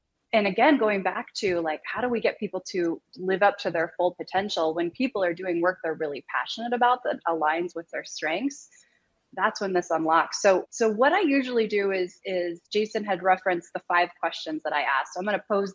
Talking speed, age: 220 wpm, 20-39